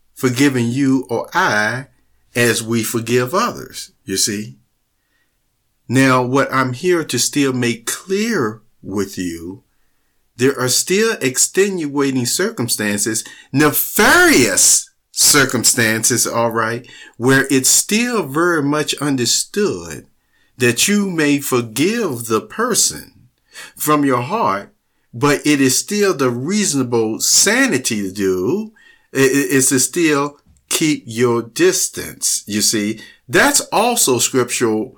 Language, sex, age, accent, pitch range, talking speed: English, male, 50-69, American, 115-145 Hz, 110 wpm